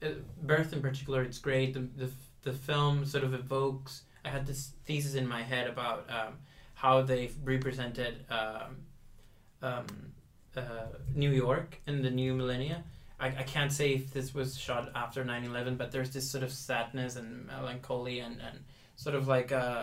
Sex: male